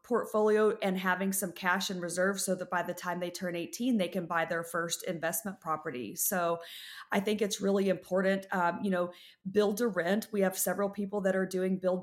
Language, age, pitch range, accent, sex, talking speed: English, 30-49, 180-205 Hz, American, female, 210 wpm